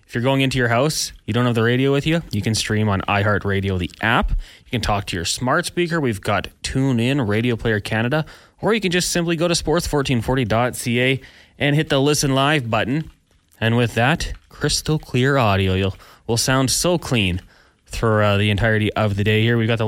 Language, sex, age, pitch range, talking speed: English, male, 20-39, 100-135 Hz, 205 wpm